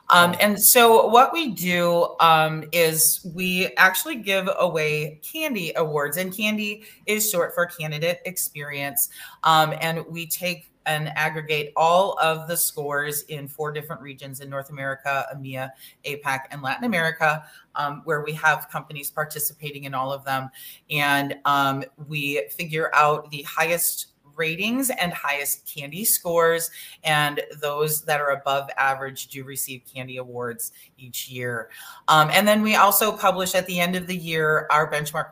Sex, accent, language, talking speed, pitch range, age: female, American, English, 155 wpm, 145-180 Hz, 30-49